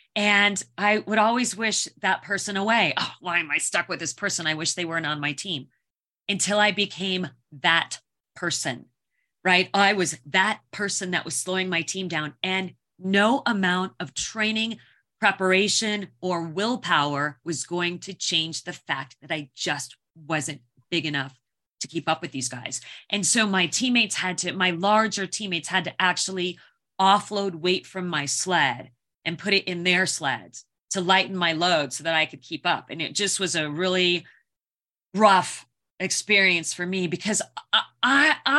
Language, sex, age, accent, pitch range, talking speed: English, female, 30-49, American, 165-210 Hz, 170 wpm